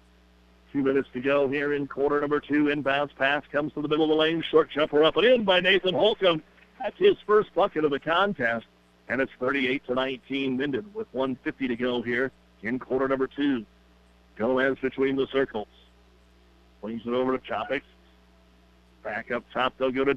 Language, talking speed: English, 190 wpm